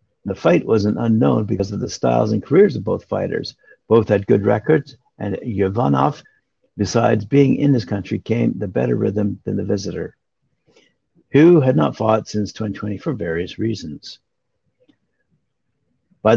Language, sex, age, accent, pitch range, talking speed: English, male, 60-79, American, 100-120 Hz, 155 wpm